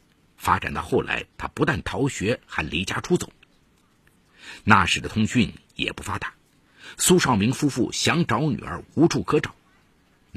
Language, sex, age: Chinese, male, 50-69